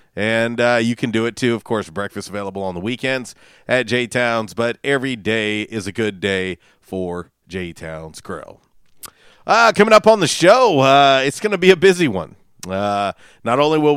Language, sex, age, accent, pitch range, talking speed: English, male, 40-59, American, 100-135 Hz, 190 wpm